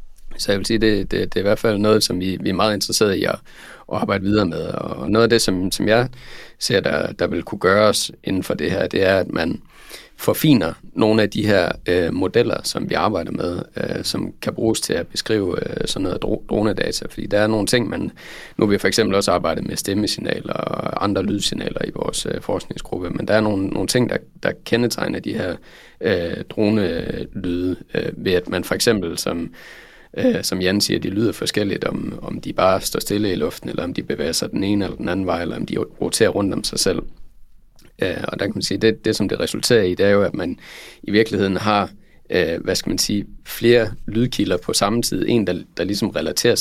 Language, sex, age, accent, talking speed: Danish, male, 30-49, native, 230 wpm